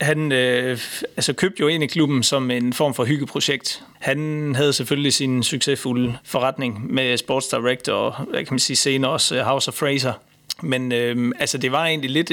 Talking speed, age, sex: 180 wpm, 30-49, male